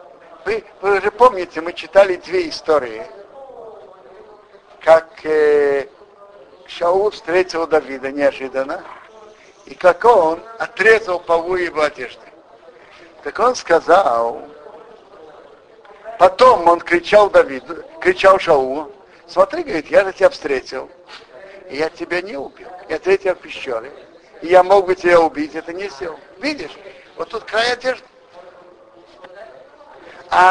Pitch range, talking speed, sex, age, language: 175-250 Hz, 120 wpm, male, 60-79, Russian